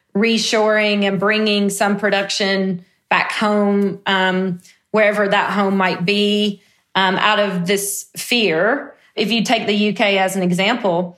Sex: female